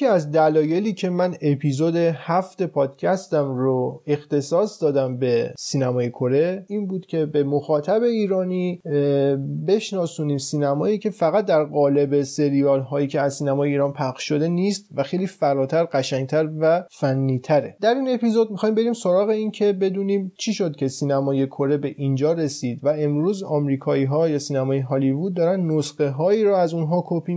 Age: 30-49